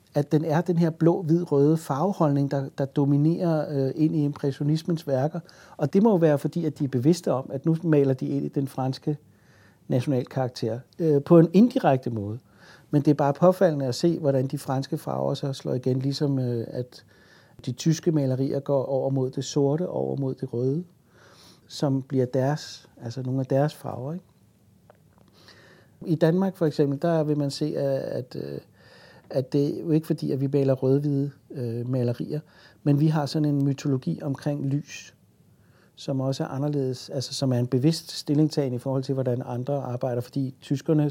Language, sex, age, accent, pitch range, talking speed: Danish, male, 60-79, native, 130-155 Hz, 185 wpm